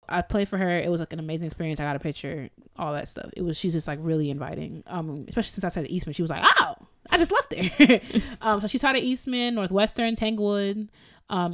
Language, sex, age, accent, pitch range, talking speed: English, female, 20-39, American, 160-190 Hz, 245 wpm